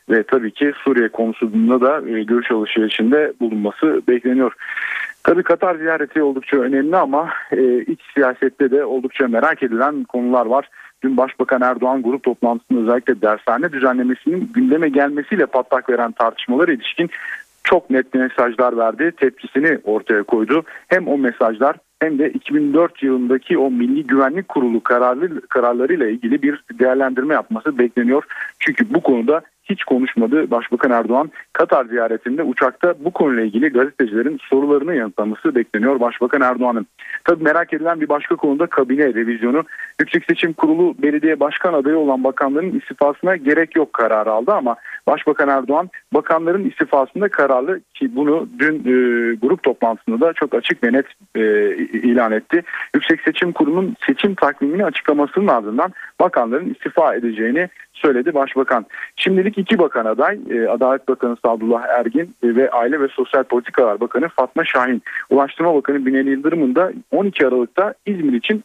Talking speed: 140 wpm